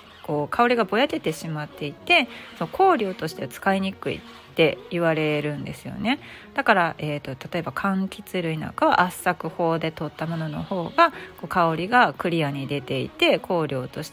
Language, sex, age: Japanese, female, 40-59